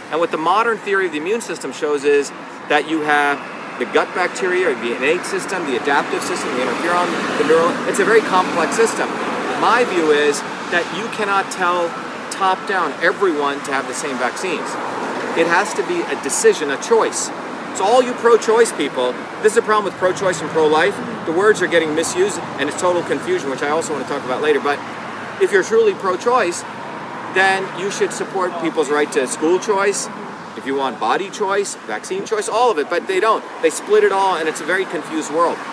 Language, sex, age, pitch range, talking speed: English, male, 40-59, 160-255 Hz, 200 wpm